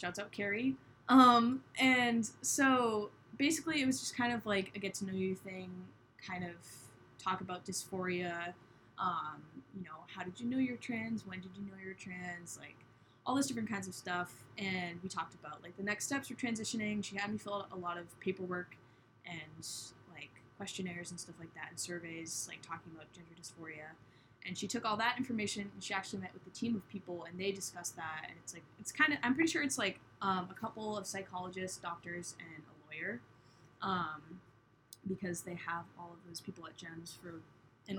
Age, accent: 10-29, American